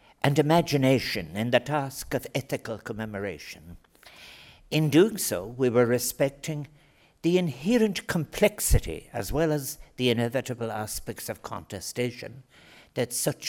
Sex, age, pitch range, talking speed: male, 60-79, 115-155 Hz, 120 wpm